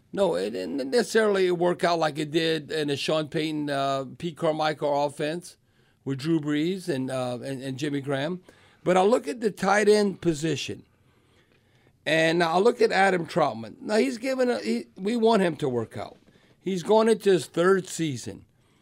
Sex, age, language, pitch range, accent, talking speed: male, 50-69, English, 140-170 Hz, American, 180 wpm